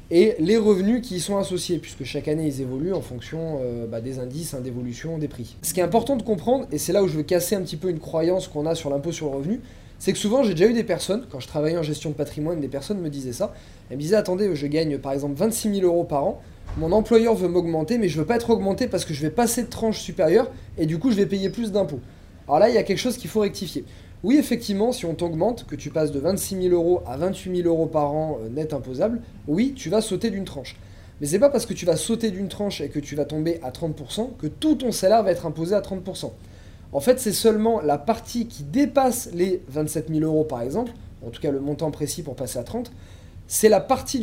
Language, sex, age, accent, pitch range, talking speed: French, male, 20-39, French, 150-215 Hz, 265 wpm